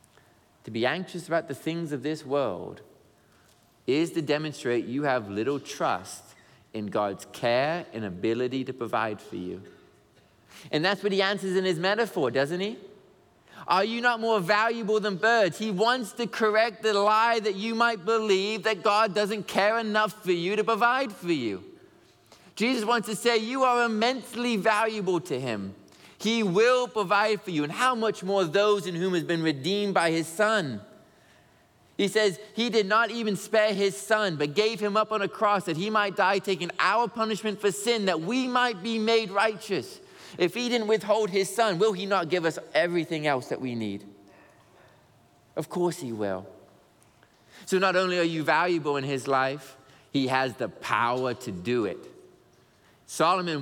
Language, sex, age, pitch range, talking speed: English, male, 20-39, 145-220 Hz, 180 wpm